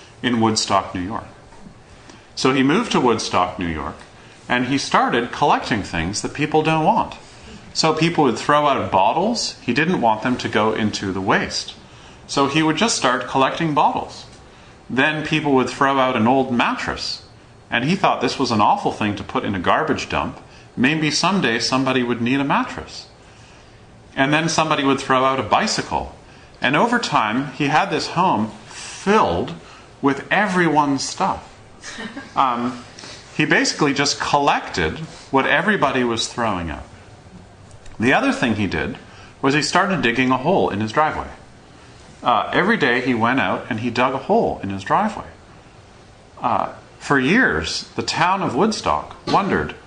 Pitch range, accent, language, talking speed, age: 115-150 Hz, American, English, 165 wpm, 30-49